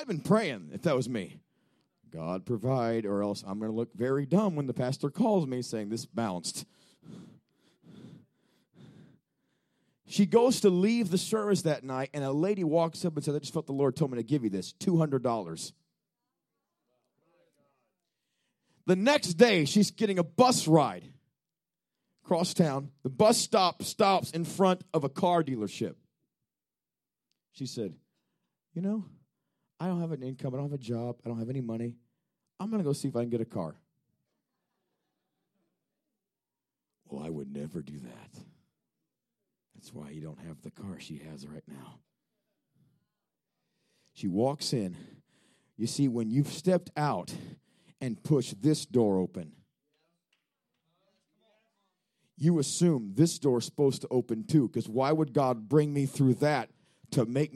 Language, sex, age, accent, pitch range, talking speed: English, male, 40-59, American, 120-180 Hz, 160 wpm